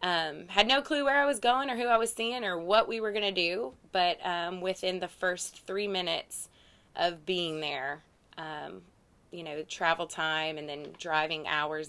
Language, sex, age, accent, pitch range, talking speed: English, female, 20-39, American, 155-185 Hz, 195 wpm